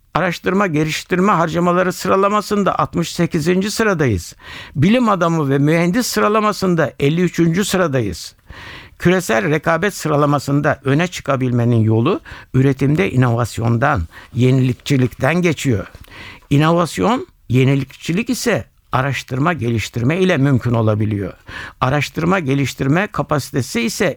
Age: 60-79